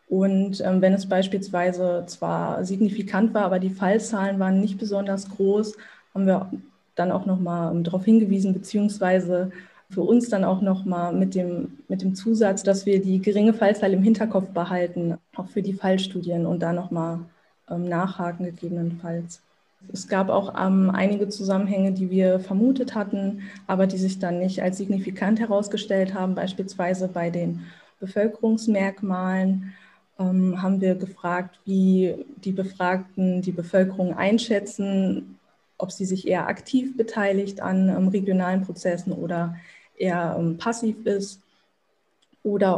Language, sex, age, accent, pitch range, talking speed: German, female, 20-39, German, 180-200 Hz, 135 wpm